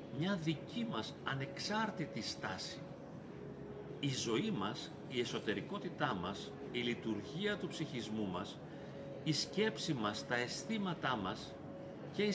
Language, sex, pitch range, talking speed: Greek, male, 140-200 Hz, 115 wpm